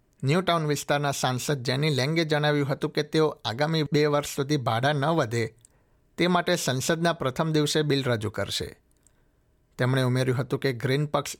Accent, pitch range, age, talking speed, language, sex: native, 125-150 Hz, 60-79, 160 wpm, Gujarati, male